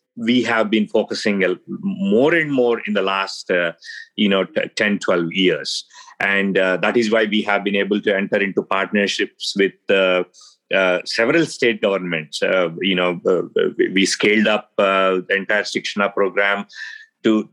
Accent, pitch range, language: Indian, 100-125 Hz, English